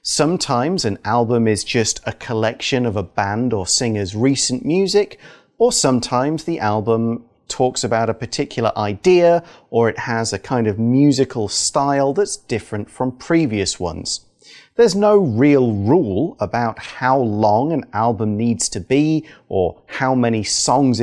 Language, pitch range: Chinese, 110-150 Hz